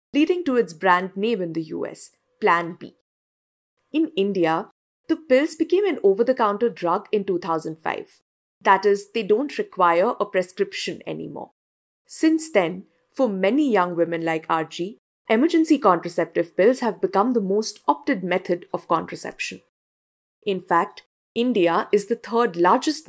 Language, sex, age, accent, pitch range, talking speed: English, female, 50-69, Indian, 180-245 Hz, 140 wpm